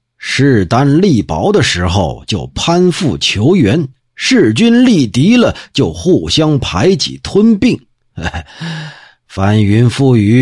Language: Chinese